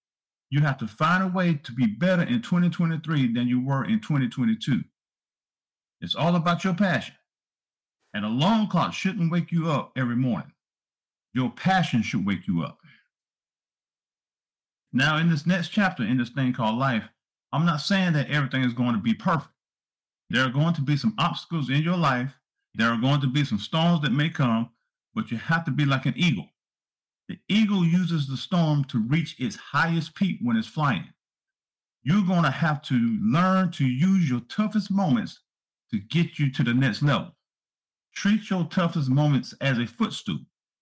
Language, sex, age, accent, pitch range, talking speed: English, male, 50-69, American, 130-185 Hz, 180 wpm